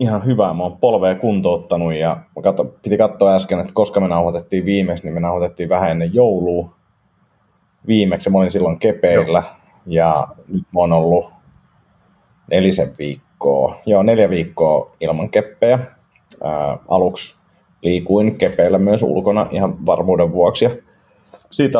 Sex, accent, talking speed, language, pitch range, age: male, native, 130 wpm, Finnish, 85-105 Hz, 30-49